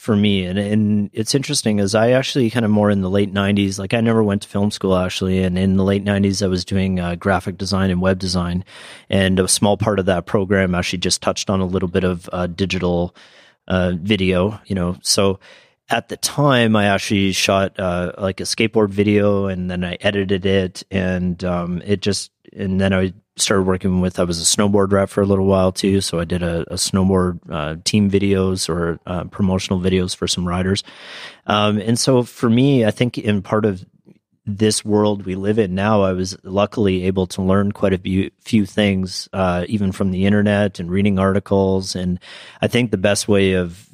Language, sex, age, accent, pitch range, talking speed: English, male, 30-49, American, 95-105 Hz, 210 wpm